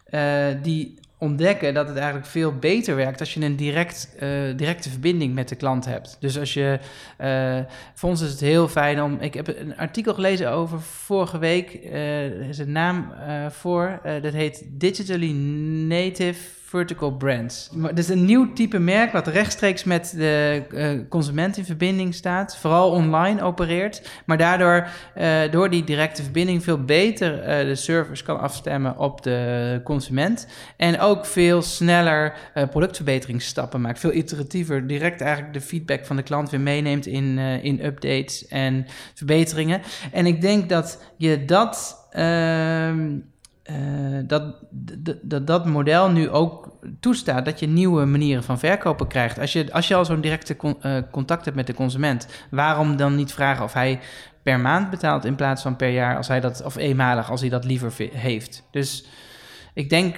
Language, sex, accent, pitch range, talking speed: Dutch, male, Dutch, 135-170 Hz, 170 wpm